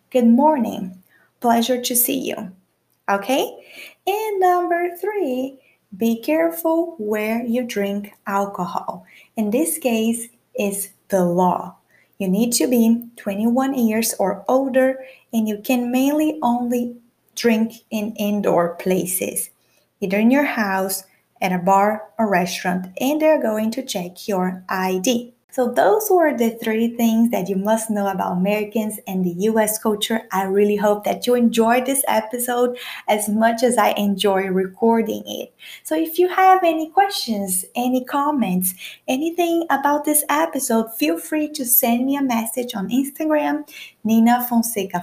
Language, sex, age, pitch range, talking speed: Portuguese, female, 20-39, 200-265 Hz, 145 wpm